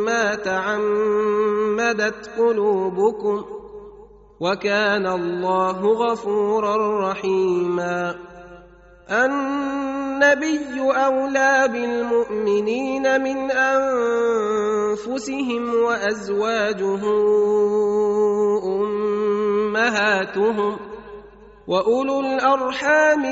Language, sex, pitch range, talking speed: Arabic, male, 205-235 Hz, 40 wpm